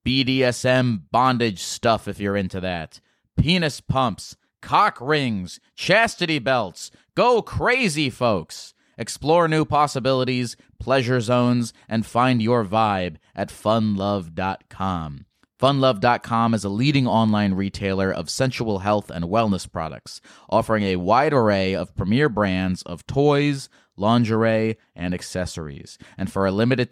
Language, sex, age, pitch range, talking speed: English, male, 30-49, 100-130 Hz, 125 wpm